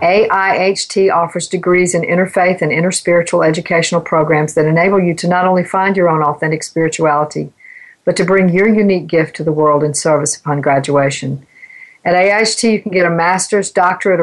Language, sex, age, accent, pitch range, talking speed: English, female, 50-69, American, 165-195 Hz, 175 wpm